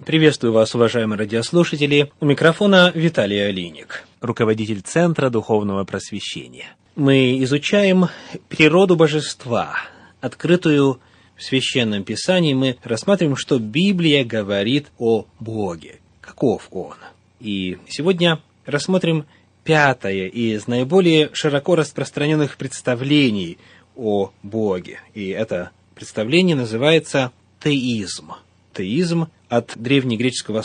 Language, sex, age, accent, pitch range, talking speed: Russian, male, 30-49, native, 115-150 Hz, 95 wpm